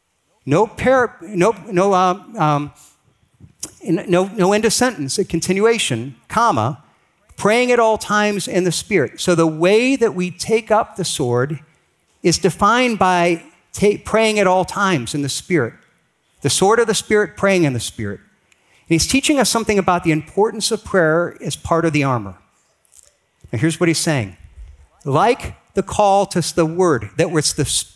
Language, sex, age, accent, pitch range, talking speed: English, male, 50-69, American, 155-205 Hz, 165 wpm